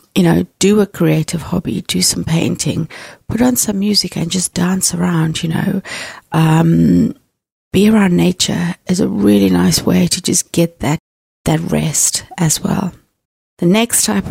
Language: English